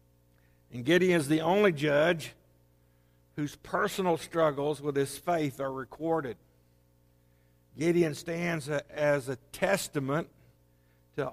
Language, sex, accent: English, male, American